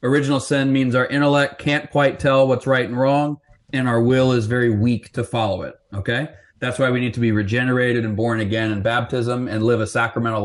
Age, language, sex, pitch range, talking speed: 30-49, English, male, 115-145 Hz, 220 wpm